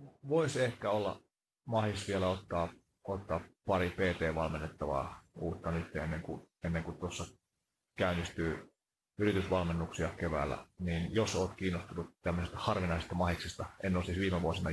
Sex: male